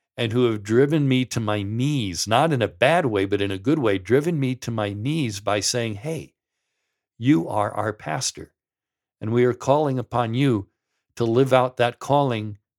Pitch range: 110-145 Hz